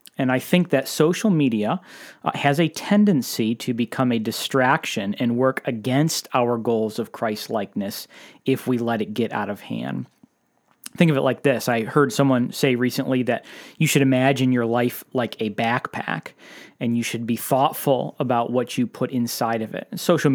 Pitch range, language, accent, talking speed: 120-140 Hz, English, American, 175 wpm